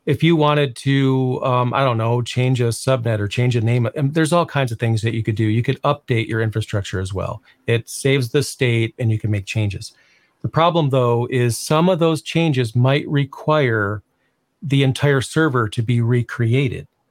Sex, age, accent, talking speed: male, 40-59, American, 200 wpm